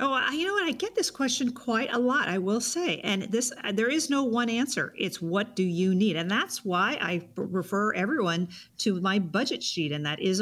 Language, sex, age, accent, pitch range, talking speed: English, female, 50-69, American, 165-220 Hz, 225 wpm